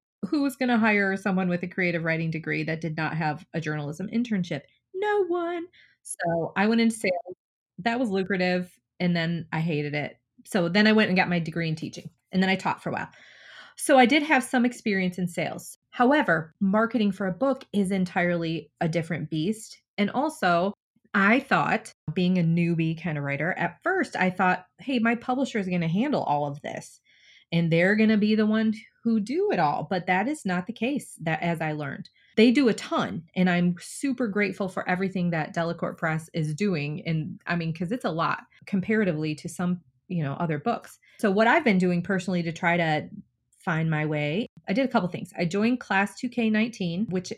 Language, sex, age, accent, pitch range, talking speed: English, female, 30-49, American, 165-220 Hz, 210 wpm